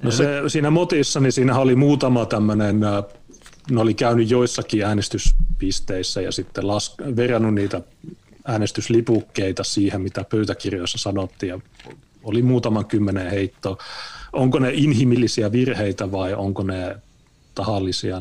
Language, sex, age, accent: Finnish, male, 30-49, native